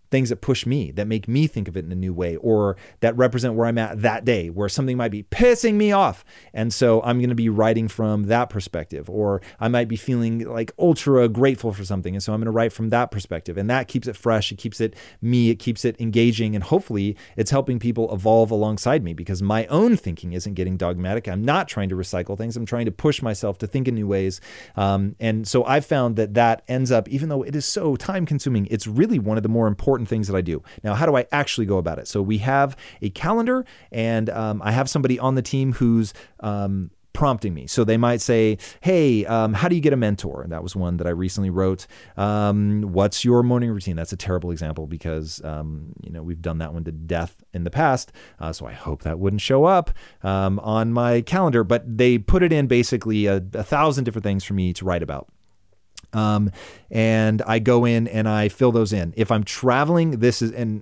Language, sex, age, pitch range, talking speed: English, male, 30-49, 95-120 Hz, 235 wpm